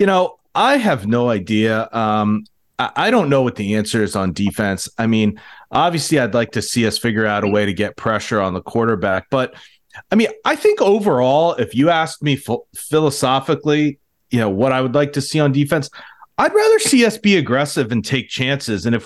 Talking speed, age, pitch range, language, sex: 210 wpm, 30-49, 110-160 Hz, English, male